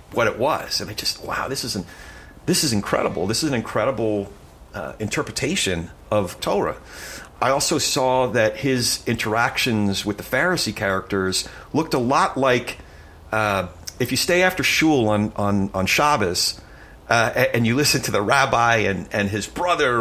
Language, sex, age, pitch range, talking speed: English, male, 40-59, 95-135 Hz, 170 wpm